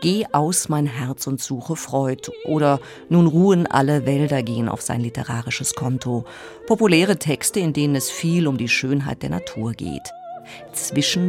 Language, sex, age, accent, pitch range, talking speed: German, female, 50-69, German, 130-180 Hz, 160 wpm